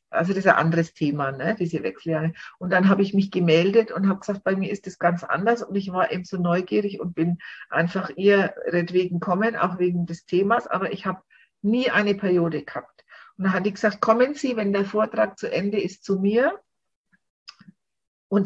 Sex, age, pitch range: female, 50-69, 180-210 Hz